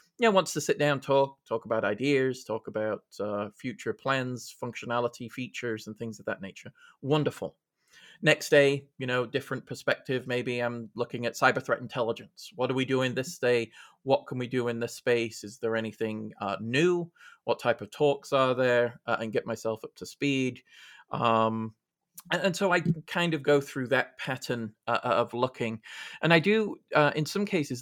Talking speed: 190 wpm